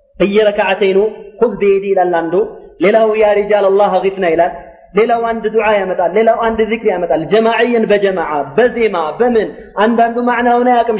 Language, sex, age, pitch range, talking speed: Amharic, male, 30-49, 195-275 Hz, 170 wpm